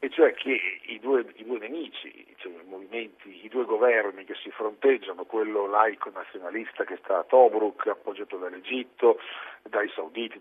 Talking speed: 160 wpm